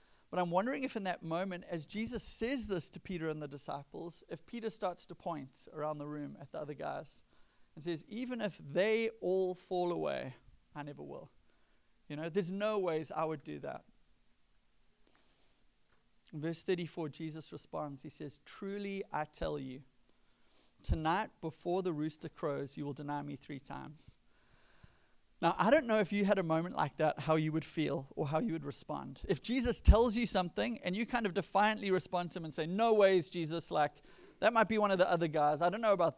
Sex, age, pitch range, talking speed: male, 30-49, 155-200 Hz, 200 wpm